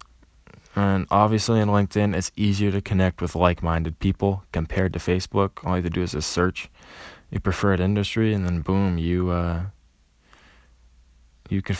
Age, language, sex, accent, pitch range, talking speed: 20-39, English, male, American, 85-100 Hz, 165 wpm